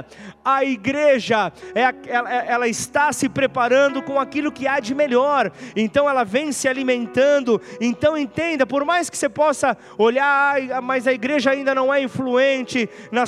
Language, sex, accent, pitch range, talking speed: Portuguese, male, Brazilian, 205-265 Hz, 150 wpm